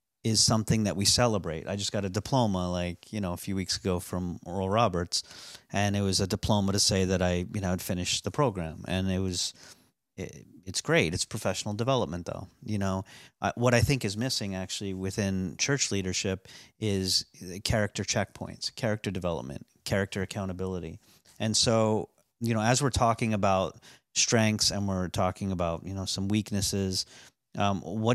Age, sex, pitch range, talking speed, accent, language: 40-59, male, 95-115 Hz, 175 wpm, American, English